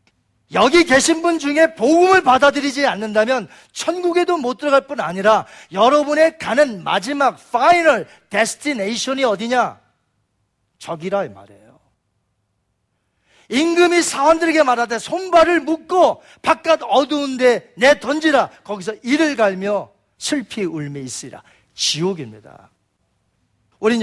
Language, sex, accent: Korean, male, native